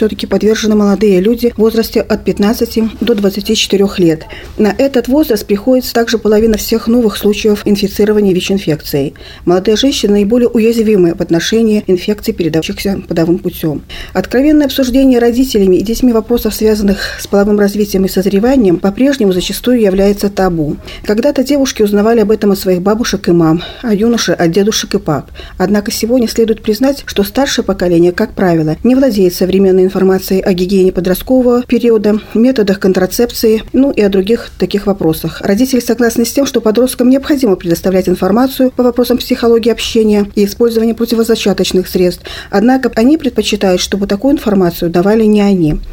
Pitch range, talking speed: 190-235 Hz, 155 wpm